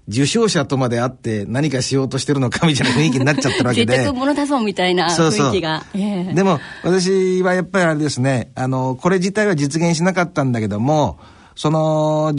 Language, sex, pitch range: Japanese, male, 120-170 Hz